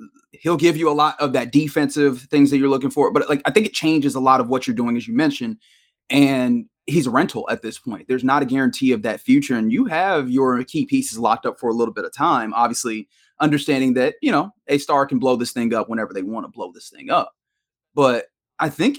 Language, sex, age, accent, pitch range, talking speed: English, male, 30-49, American, 130-165 Hz, 250 wpm